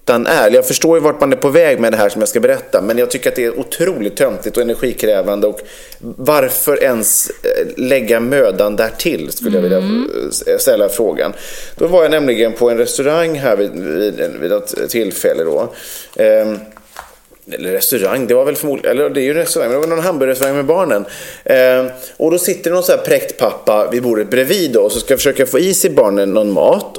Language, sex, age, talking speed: English, male, 30-49, 210 wpm